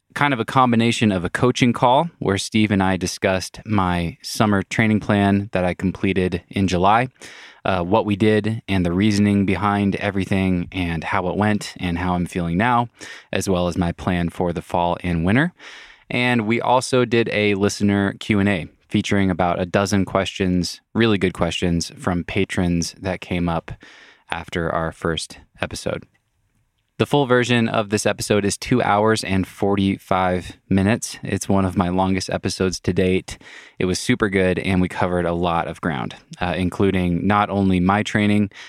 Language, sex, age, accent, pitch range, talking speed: English, male, 20-39, American, 90-110 Hz, 170 wpm